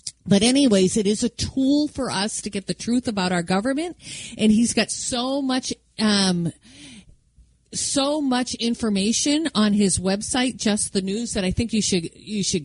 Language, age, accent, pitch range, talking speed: English, 40-59, American, 175-235 Hz, 175 wpm